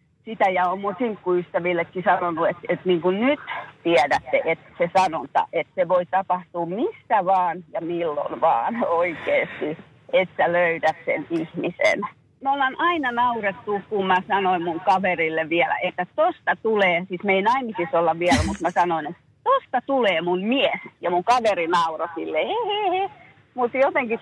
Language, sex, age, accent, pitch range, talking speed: Finnish, female, 40-59, native, 170-245 Hz, 155 wpm